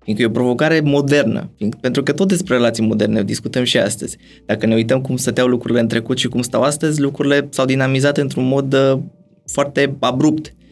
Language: Romanian